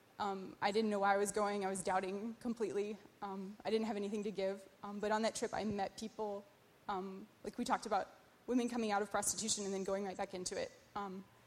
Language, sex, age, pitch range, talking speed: English, female, 20-39, 195-220 Hz, 235 wpm